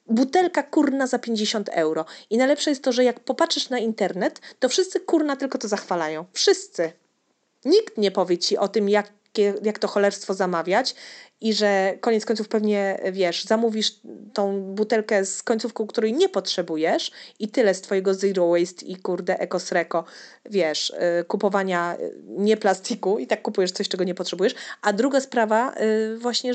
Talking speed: 160 wpm